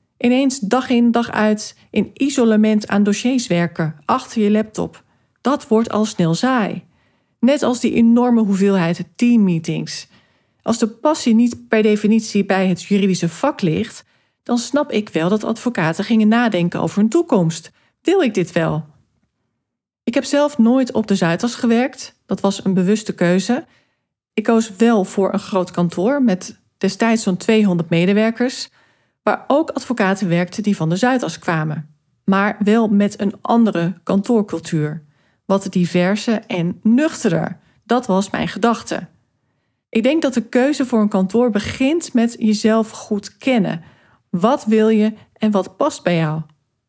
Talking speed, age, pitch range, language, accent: 150 wpm, 40-59, 180-235 Hz, Dutch, Dutch